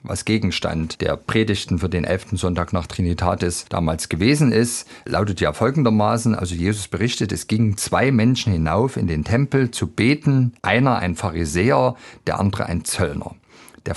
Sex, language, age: male, German, 50-69